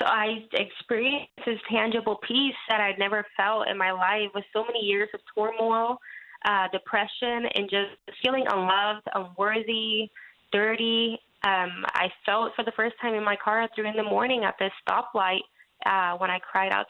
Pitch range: 200-235 Hz